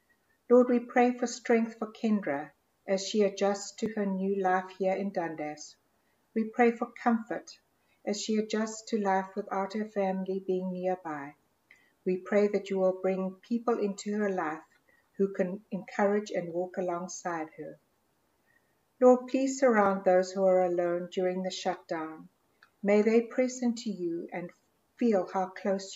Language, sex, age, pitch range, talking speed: English, female, 60-79, 180-215 Hz, 155 wpm